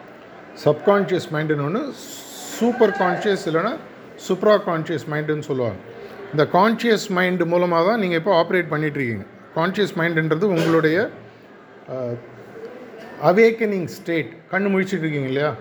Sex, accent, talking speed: male, native, 105 wpm